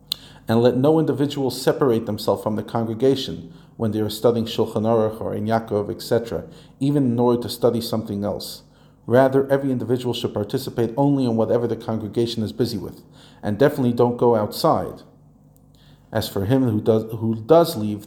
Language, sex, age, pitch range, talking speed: English, male, 40-59, 105-135 Hz, 175 wpm